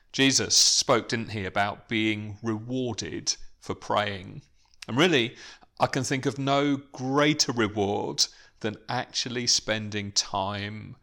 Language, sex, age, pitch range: English, male, 40-59, 105-135 Hz